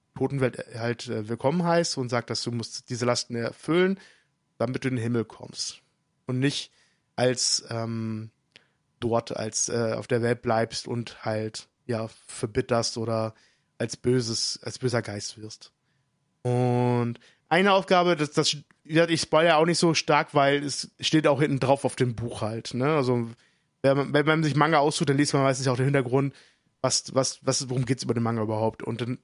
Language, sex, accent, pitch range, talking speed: German, male, German, 125-150 Hz, 190 wpm